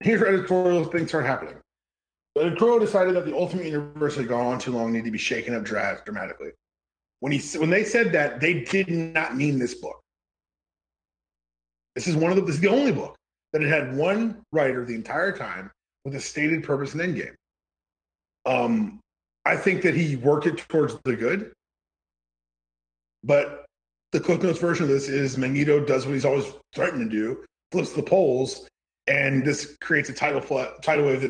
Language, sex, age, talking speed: English, male, 30-49, 185 wpm